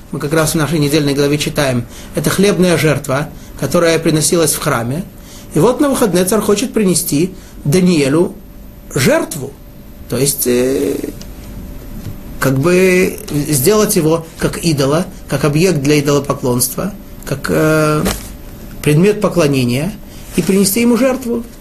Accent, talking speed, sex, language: native, 125 wpm, male, Russian